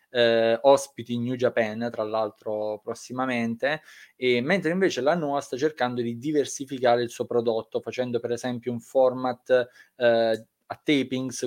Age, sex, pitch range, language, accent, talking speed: 20-39, male, 115-130 Hz, Italian, native, 145 wpm